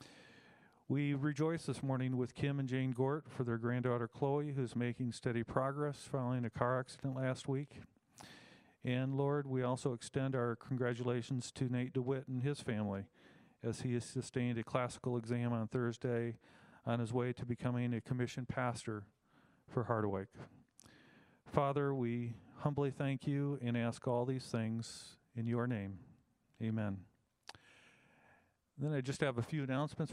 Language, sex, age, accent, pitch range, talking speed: English, male, 40-59, American, 120-140 Hz, 150 wpm